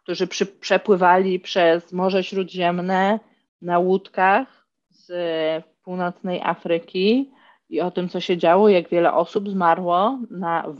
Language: Polish